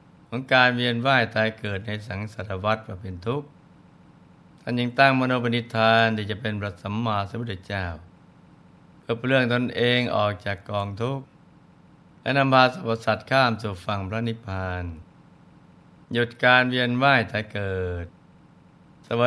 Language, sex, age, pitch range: Thai, male, 60-79, 105-125 Hz